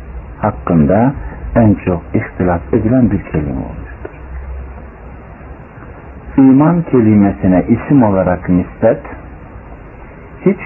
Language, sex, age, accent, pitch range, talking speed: Turkish, male, 60-79, native, 85-120 Hz, 80 wpm